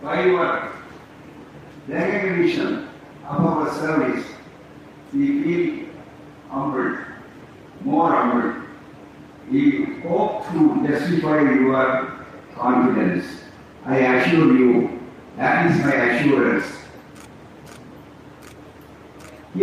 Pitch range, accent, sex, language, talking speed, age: 155-205 Hz, native, male, Tamil, 75 wpm, 50-69